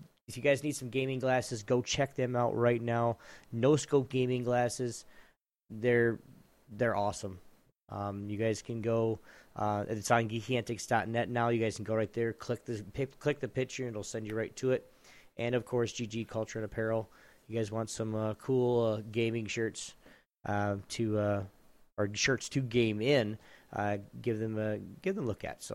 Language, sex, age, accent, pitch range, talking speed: English, male, 20-39, American, 110-130 Hz, 185 wpm